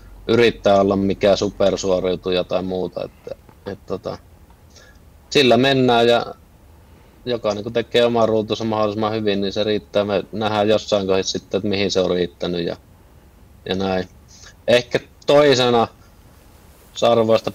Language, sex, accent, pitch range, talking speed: Finnish, male, native, 95-110 Hz, 125 wpm